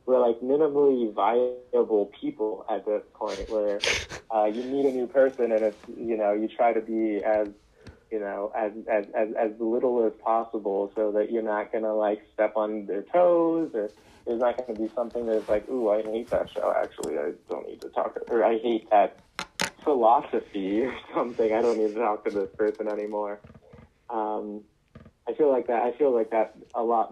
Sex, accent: male, American